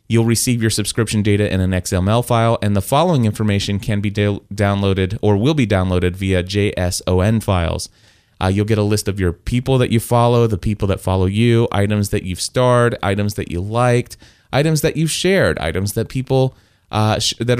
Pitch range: 100-125 Hz